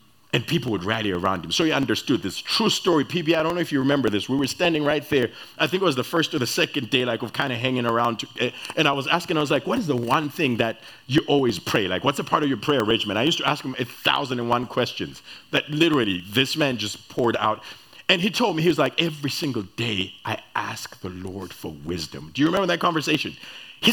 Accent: American